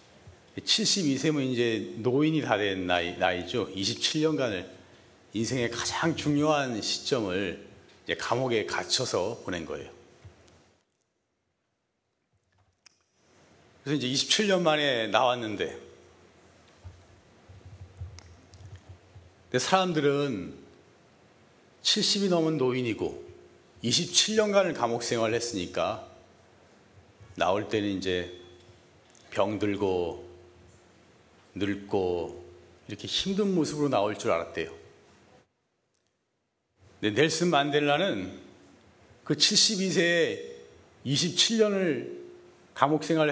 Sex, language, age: male, Korean, 40-59